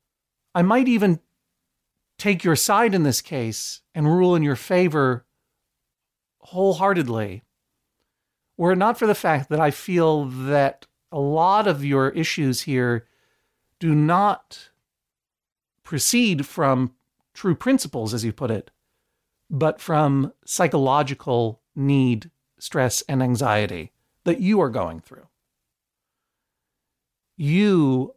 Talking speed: 115 wpm